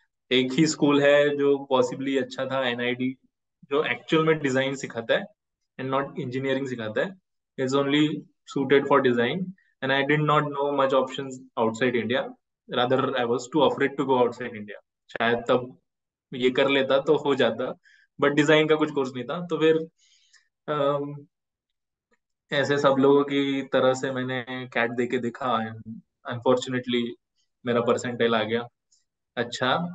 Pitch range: 125-150 Hz